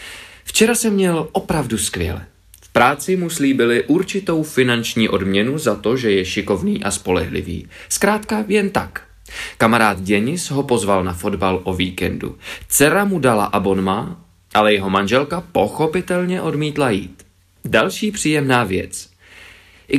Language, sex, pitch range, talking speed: Czech, male, 95-160 Hz, 135 wpm